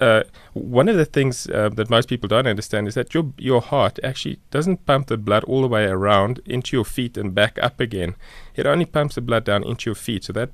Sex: male